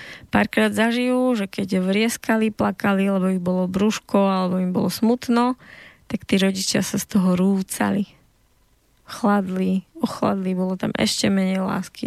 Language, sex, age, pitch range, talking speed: Slovak, female, 20-39, 190-215 Hz, 140 wpm